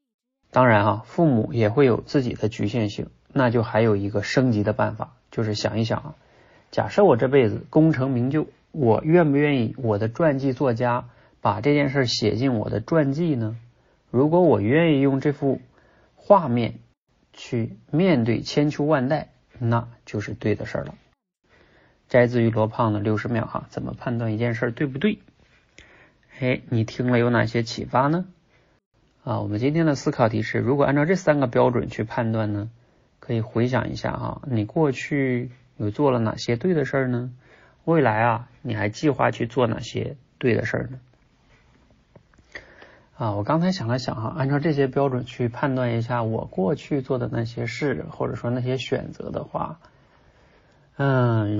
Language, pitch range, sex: Chinese, 115-140 Hz, male